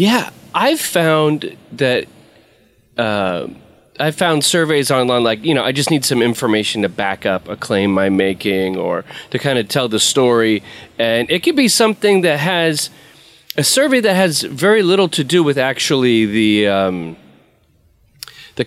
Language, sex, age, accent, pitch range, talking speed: English, male, 30-49, American, 115-160 Hz, 165 wpm